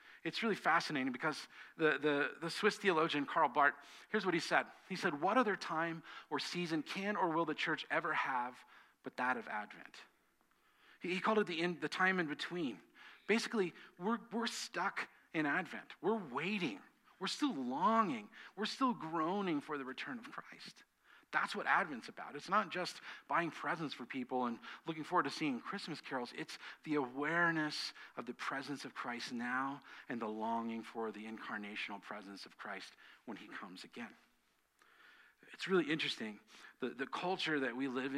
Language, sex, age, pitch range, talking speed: English, male, 40-59, 130-185 Hz, 175 wpm